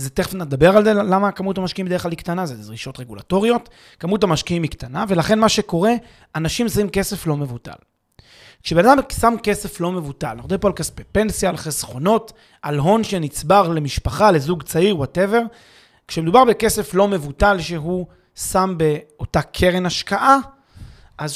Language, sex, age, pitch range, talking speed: Hebrew, male, 30-49, 155-210 Hz, 160 wpm